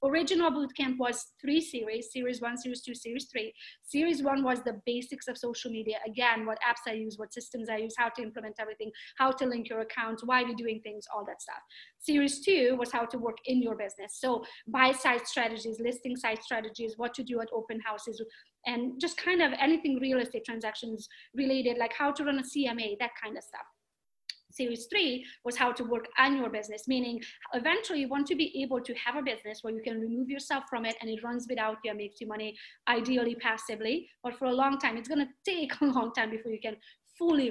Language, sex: English, female